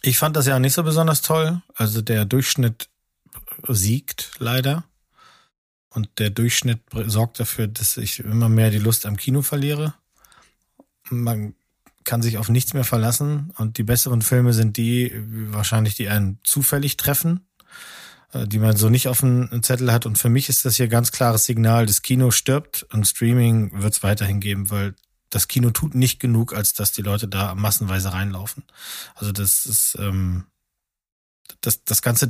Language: German